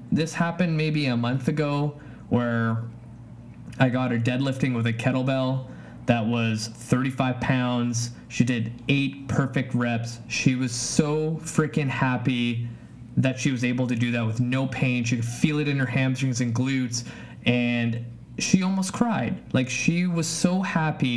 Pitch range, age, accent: 120-155 Hz, 20-39, American